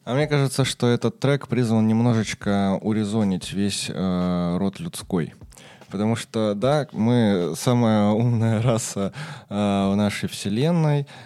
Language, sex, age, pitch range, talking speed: Russian, male, 20-39, 100-130 Hz, 130 wpm